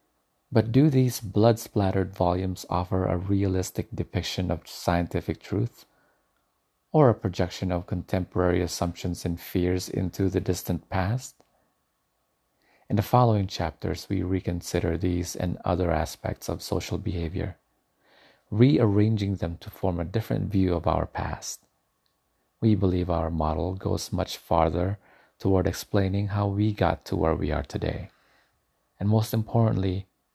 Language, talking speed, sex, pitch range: English, 135 wpm, male, 85-105 Hz